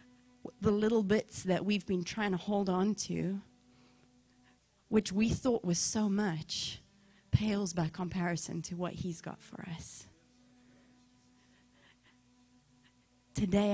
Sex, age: female, 30-49